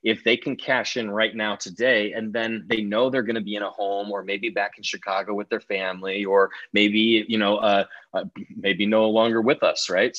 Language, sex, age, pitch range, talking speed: English, male, 20-39, 100-115 Hz, 230 wpm